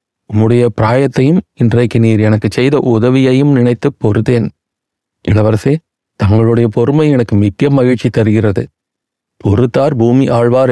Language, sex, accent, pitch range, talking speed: Tamil, male, native, 115-135 Hz, 105 wpm